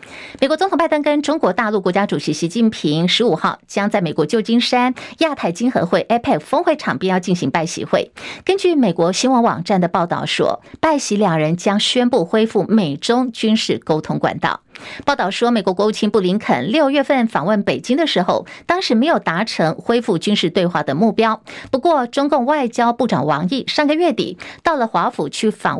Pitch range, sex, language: 185-255 Hz, female, Chinese